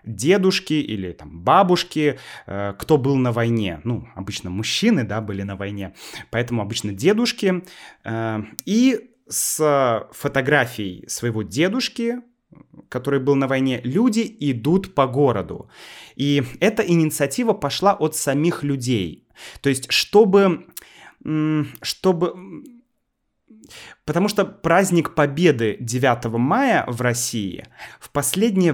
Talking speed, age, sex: 110 wpm, 30-49, male